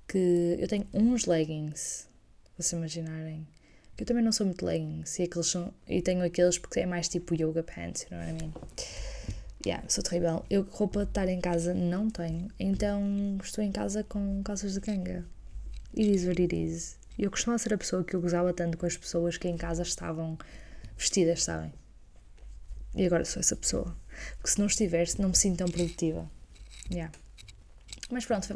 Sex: female